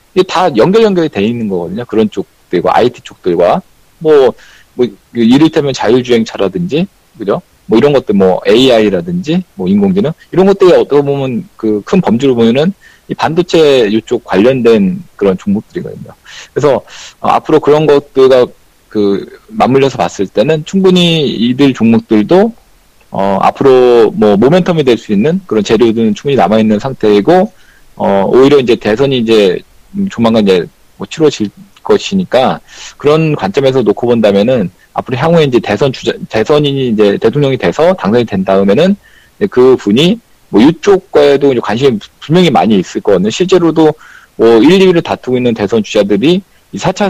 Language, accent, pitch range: Korean, native, 110-180 Hz